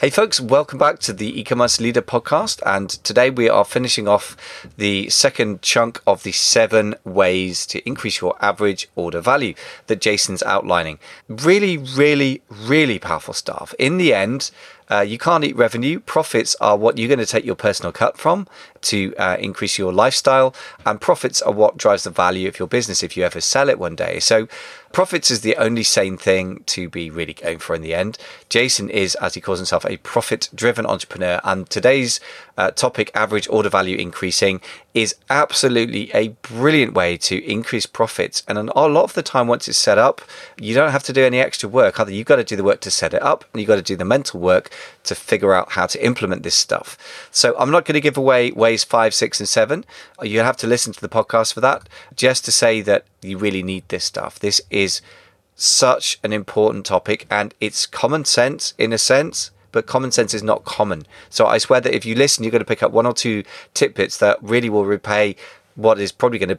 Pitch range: 95-120 Hz